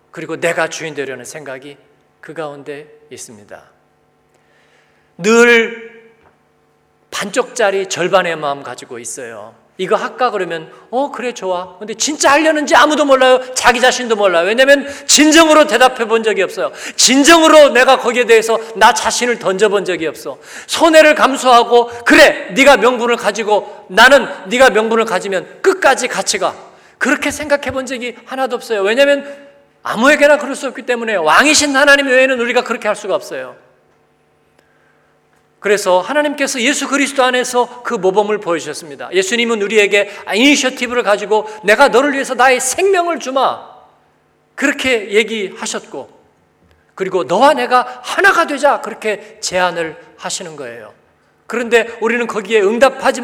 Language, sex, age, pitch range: Korean, male, 40-59, 200-265 Hz